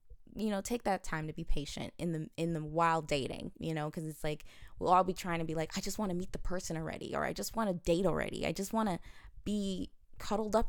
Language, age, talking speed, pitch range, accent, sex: English, 20-39, 270 wpm, 155-190 Hz, American, female